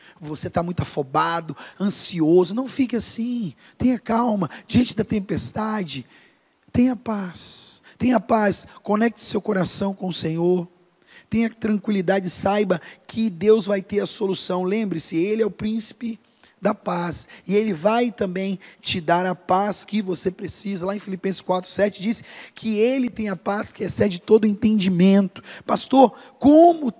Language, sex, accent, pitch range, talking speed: Portuguese, male, Brazilian, 195-235 Hz, 145 wpm